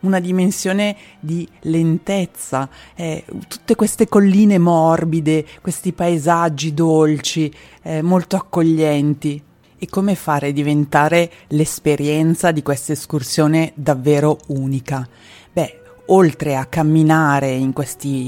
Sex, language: female, Italian